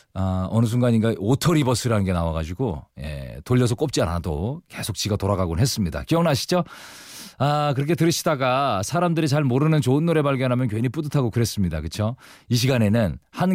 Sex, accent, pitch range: male, native, 105-165 Hz